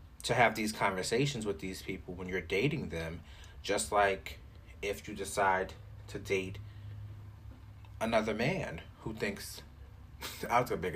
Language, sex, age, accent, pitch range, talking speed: English, male, 30-49, American, 80-105 Hz, 140 wpm